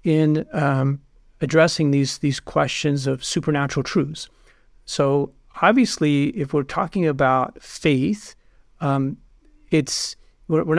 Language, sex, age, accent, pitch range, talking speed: English, male, 50-69, American, 140-160 Hz, 105 wpm